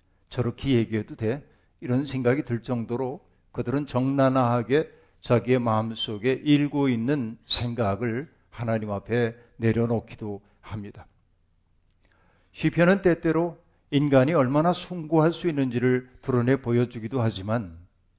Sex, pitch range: male, 110-145 Hz